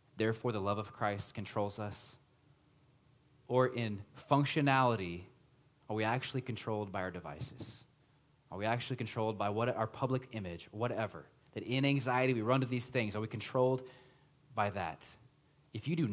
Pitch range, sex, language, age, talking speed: 120-145 Hz, male, English, 30-49, 160 wpm